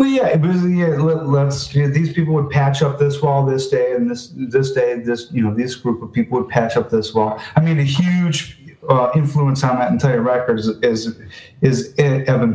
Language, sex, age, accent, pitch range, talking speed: English, male, 30-49, American, 110-140 Hz, 230 wpm